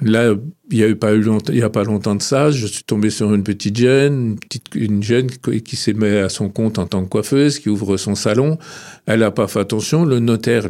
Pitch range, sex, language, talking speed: 100-135 Hz, male, French, 235 wpm